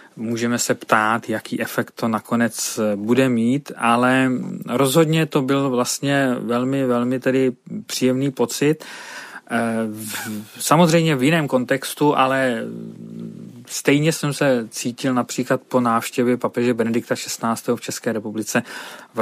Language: Czech